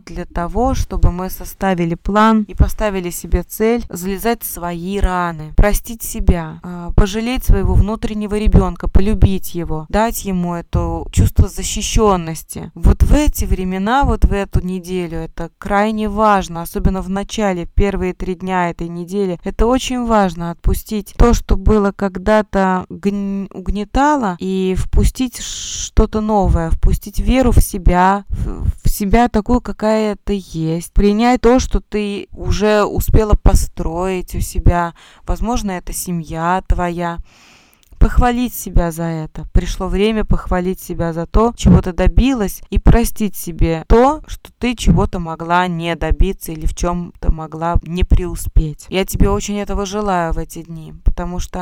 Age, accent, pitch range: 20-39, native, 170-210 Hz